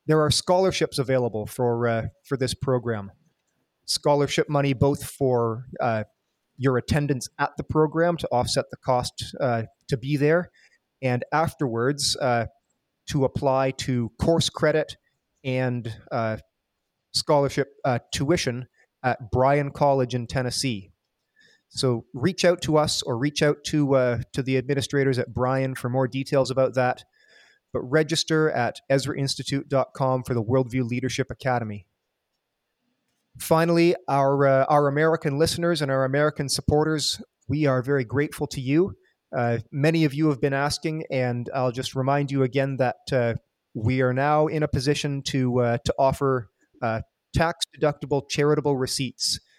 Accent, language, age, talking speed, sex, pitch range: American, English, 30-49, 145 wpm, male, 125-150 Hz